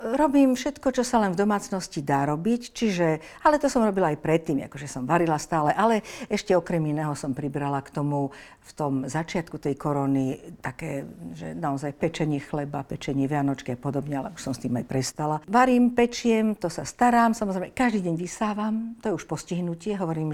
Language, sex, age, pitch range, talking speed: Slovak, female, 50-69, 145-195 Hz, 190 wpm